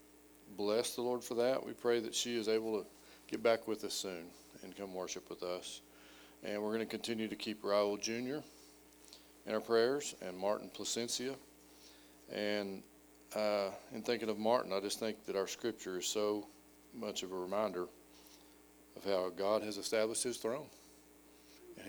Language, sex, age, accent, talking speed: English, male, 40-59, American, 175 wpm